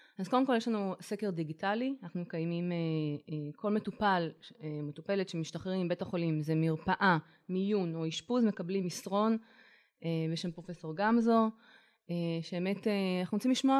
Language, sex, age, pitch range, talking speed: Hebrew, female, 20-39, 170-210 Hz, 125 wpm